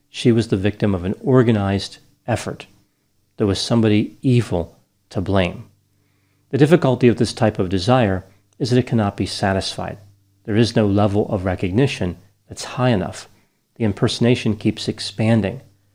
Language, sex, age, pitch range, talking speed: English, male, 40-59, 100-120 Hz, 150 wpm